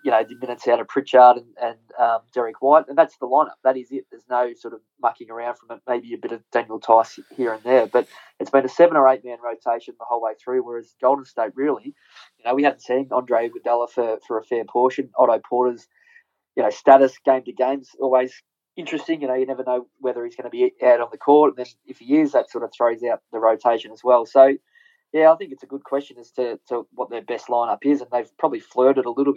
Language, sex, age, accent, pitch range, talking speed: English, male, 20-39, Australian, 115-140 Hz, 255 wpm